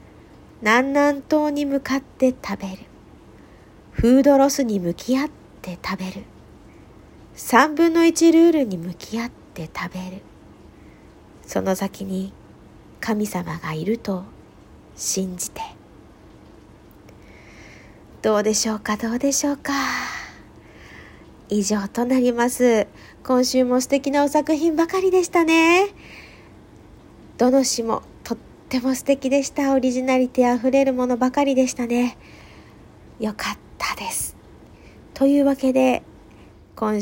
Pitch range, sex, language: 190-280 Hz, female, Japanese